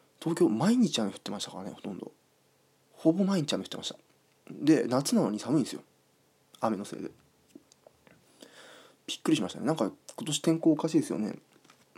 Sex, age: male, 20-39